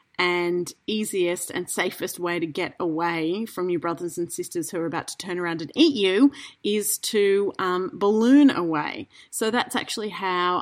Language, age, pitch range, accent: English, 30-49, 175-245 Hz, Australian